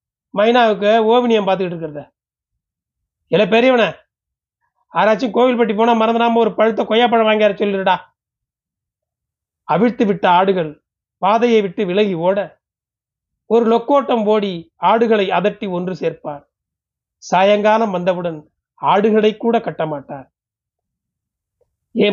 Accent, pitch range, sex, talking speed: native, 170-230 Hz, male, 65 wpm